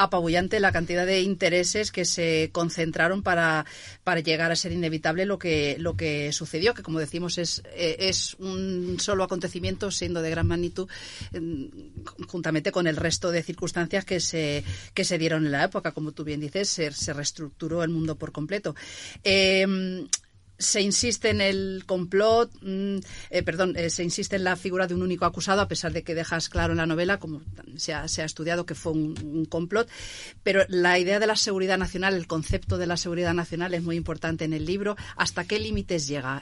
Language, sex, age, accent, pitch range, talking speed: Spanish, female, 40-59, Spanish, 155-185 Hz, 195 wpm